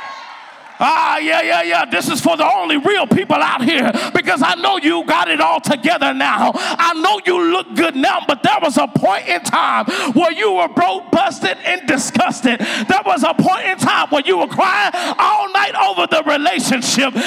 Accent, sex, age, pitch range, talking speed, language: American, male, 40-59, 295-365 Hz, 200 wpm, English